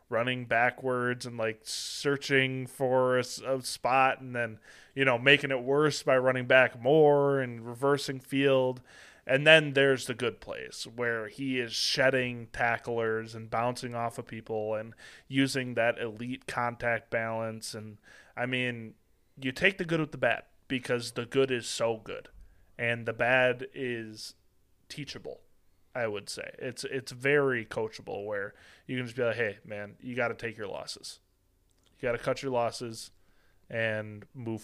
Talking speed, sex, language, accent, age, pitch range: 165 wpm, male, English, American, 20-39, 115-135 Hz